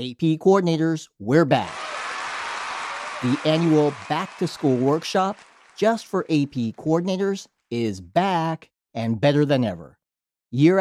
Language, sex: English, male